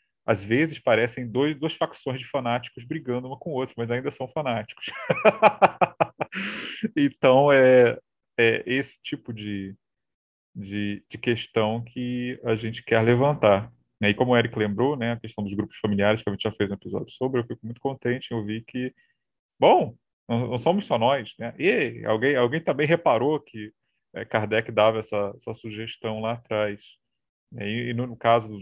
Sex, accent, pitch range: male, Brazilian, 105-125 Hz